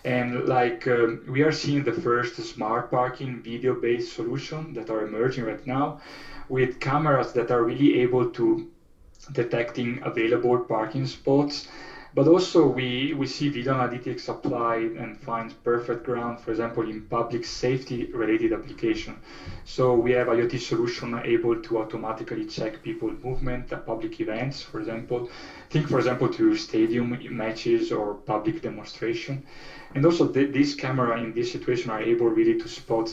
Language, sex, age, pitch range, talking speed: English, male, 20-39, 115-155 Hz, 155 wpm